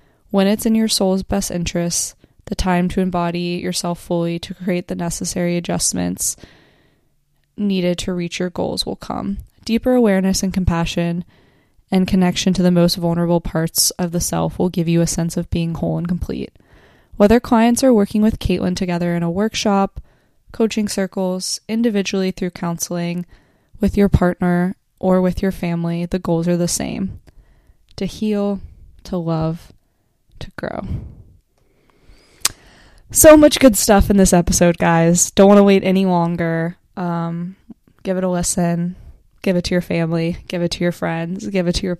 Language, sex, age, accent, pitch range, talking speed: English, female, 20-39, American, 170-195 Hz, 165 wpm